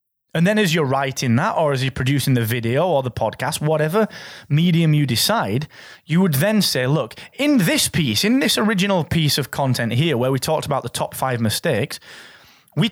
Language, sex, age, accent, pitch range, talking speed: English, male, 30-49, British, 135-195 Hz, 200 wpm